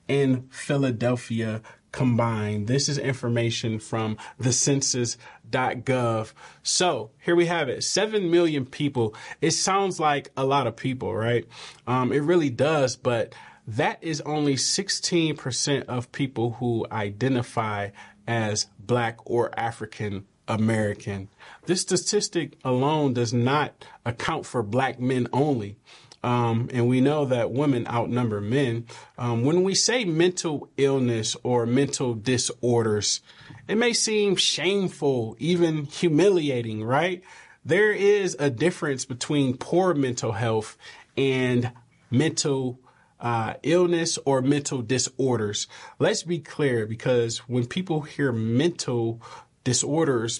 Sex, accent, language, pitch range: male, American, English, 115-150 Hz